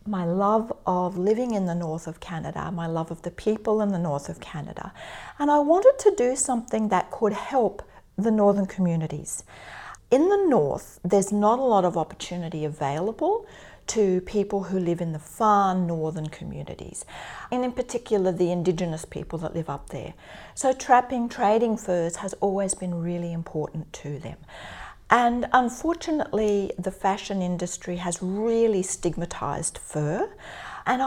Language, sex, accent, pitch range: English, female, Australian, 175-230 Hz